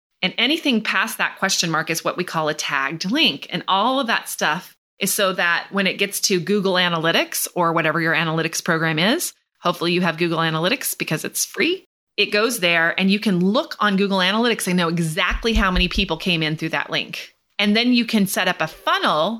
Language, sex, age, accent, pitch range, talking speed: English, female, 30-49, American, 165-200 Hz, 215 wpm